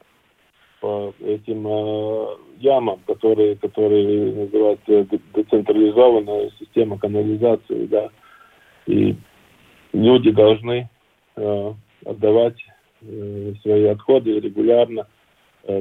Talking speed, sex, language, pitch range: 80 wpm, male, Russian, 105-120 Hz